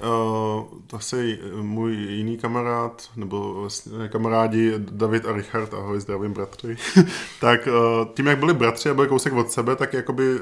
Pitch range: 110-125 Hz